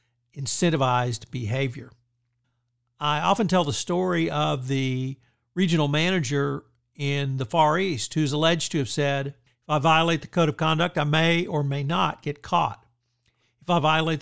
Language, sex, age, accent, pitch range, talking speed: English, male, 50-69, American, 130-170 Hz, 155 wpm